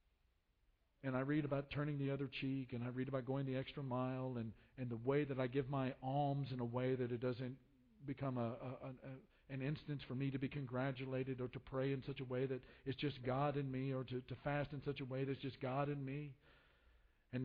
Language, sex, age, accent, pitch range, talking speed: English, male, 50-69, American, 110-145 Hz, 240 wpm